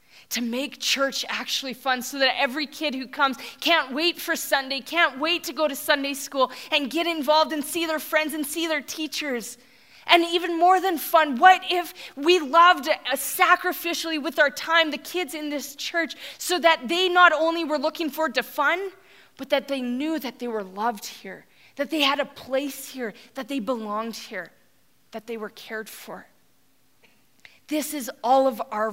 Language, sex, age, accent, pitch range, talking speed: English, female, 20-39, American, 245-310 Hz, 190 wpm